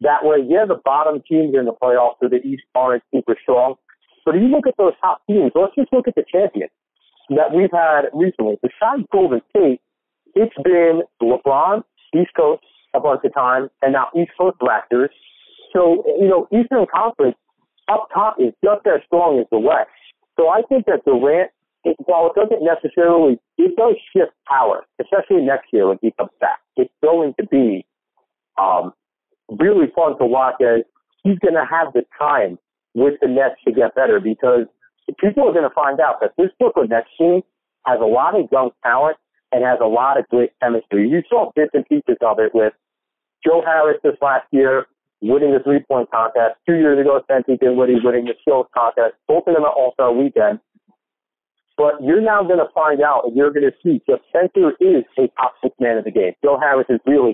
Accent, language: American, English